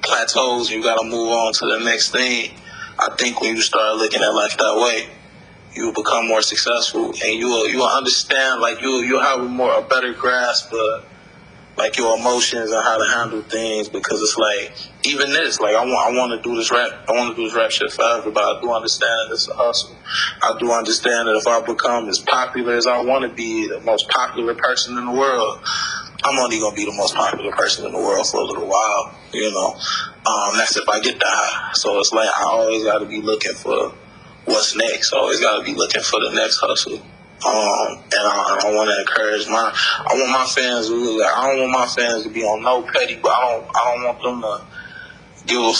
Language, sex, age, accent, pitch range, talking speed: English, male, 20-39, American, 110-125 Hz, 220 wpm